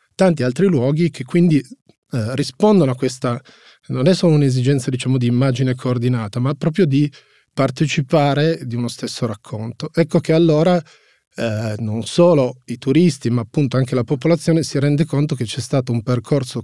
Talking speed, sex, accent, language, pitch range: 165 wpm, male, native, Italian, 120-155 Hz